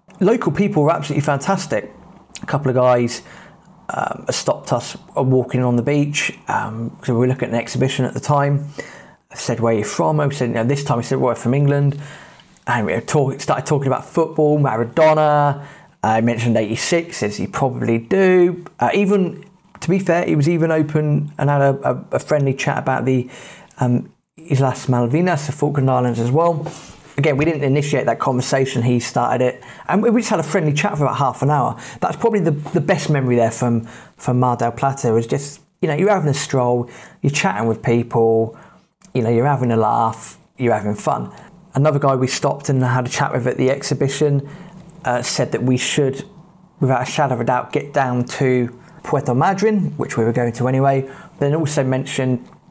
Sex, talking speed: male, 205 wpm